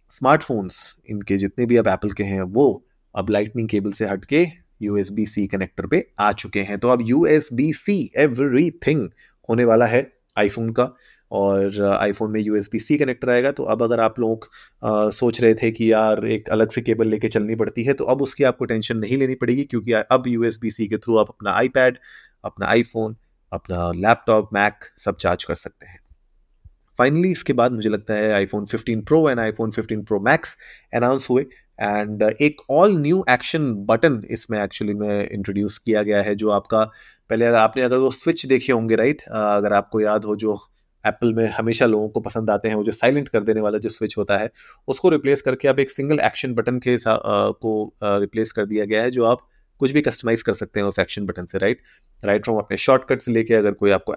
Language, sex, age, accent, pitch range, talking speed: Hindi, male, 30-49, native, 105-130 Hz, 205 wpm